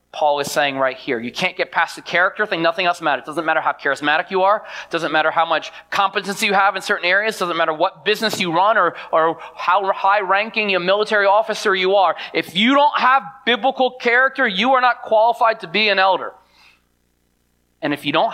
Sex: male